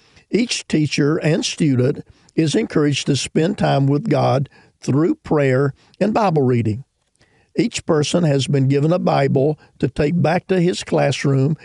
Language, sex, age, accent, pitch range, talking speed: English, male, 50-69, American, 130-160 Hz, 150 wpm